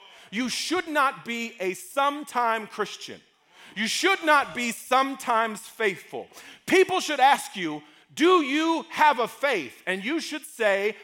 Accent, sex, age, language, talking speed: American, male, 40-59, English, 140 wpm